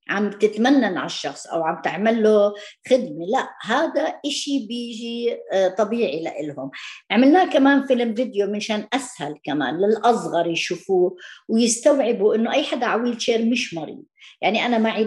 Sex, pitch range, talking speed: female, 200-265 Hz, 135 wpm